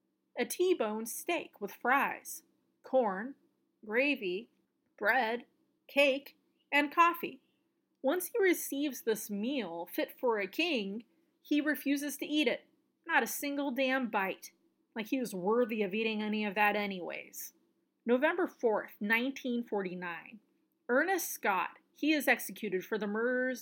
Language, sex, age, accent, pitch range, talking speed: English, female, 30-49, American, 210-295 Hz, 130 wpm